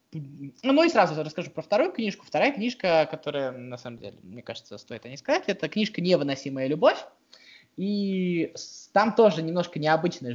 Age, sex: 20-39, male